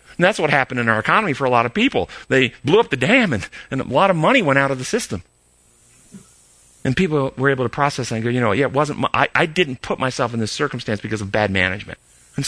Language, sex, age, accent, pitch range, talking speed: English, male, 40-59, American, 110-140 Hz, 265 wpm